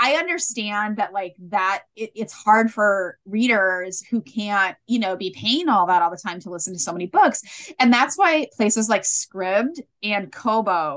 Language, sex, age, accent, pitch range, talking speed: English, female, 20-39, American, 190-245 Hz, 190 wpm